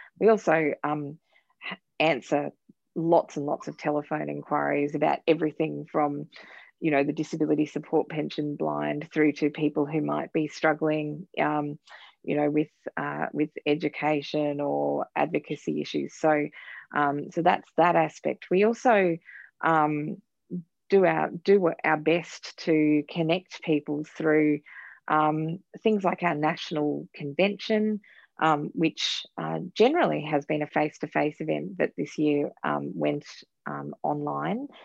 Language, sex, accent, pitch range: English, female, Australian, 145-160 Hz